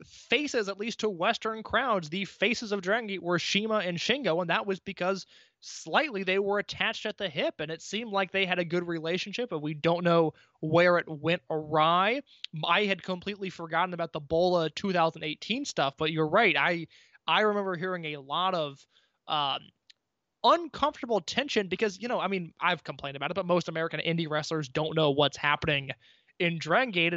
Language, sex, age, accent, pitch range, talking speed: English, male, 20-39, American, 160-195 Hz, 190 wpm